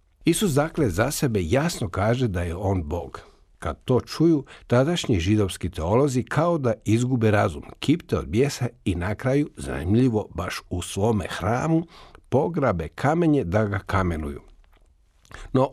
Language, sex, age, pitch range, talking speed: Croatian, male, 50-69, 90-130 Hz, 140 wpm